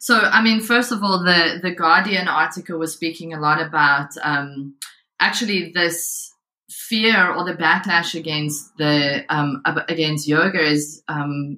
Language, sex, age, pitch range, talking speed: English, female, 20-39, 150-175 Hz, 150 wpm